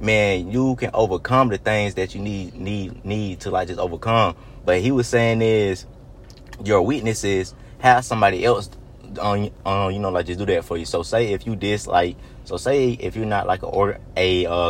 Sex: male